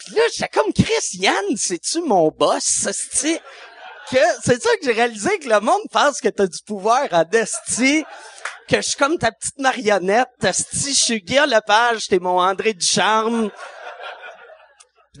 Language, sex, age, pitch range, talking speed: French, male, 30-49, 155-240 Hz, 180 wpm